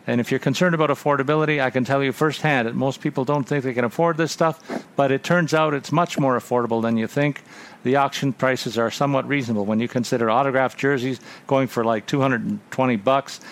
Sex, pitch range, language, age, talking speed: male, 125-155 Hz, English, 50-69, 215 wpm